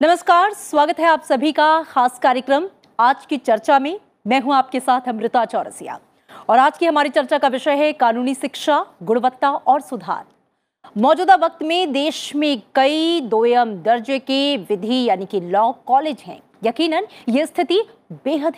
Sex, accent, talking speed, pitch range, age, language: female, native, 160 wpm, 235-310 Hz, 30-49, Hindi